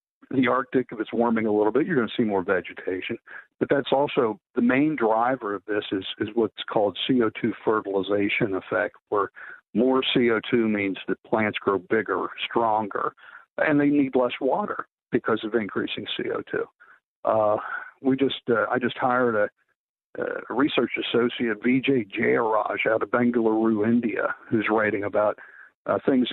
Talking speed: 155 wpm